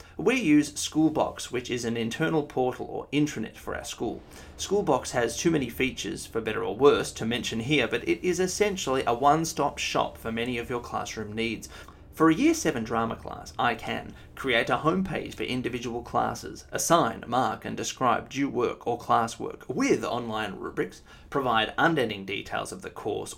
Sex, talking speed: male, 175 wpm